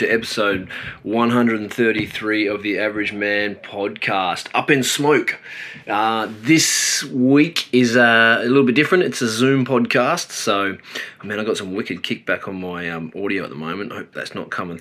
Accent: Australian